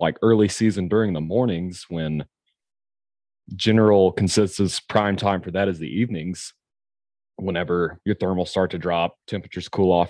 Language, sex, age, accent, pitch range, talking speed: English, male, 30-49, American, 85-100 Hz, 150 wpm